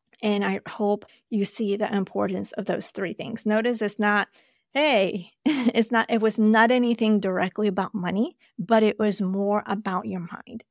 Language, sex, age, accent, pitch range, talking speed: English, female, 30-49, American, 195-225 Hz, 175 wpm